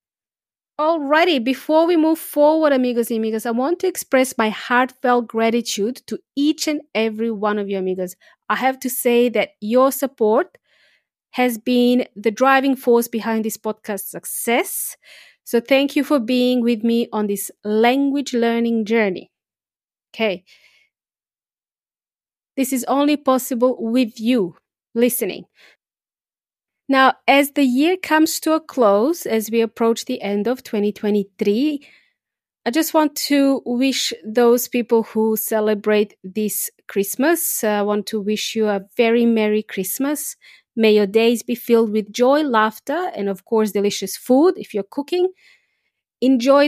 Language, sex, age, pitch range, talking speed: English, female, 30-49, 215-275 Hz, 145 wpm